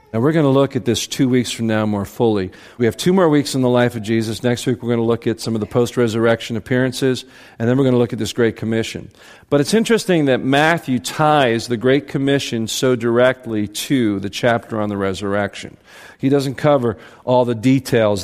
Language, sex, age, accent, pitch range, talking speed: English, male, 50-69, American, 110-140 Hz, 225 wpm